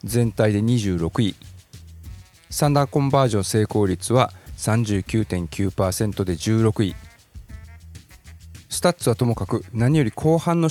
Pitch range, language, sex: 95-125 Hz, Japanese, male